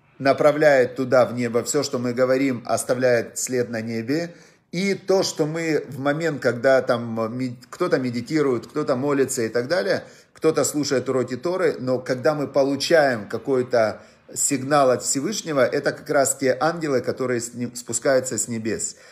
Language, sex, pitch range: Russian, male, 120-145 Hz